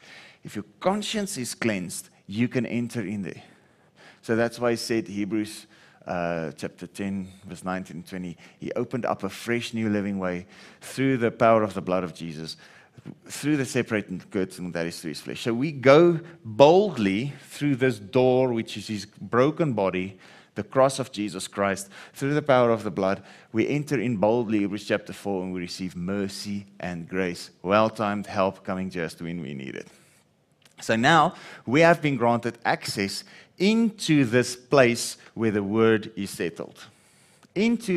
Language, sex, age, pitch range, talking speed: English, male, 30-49, 95-130 Hz, 170 wpm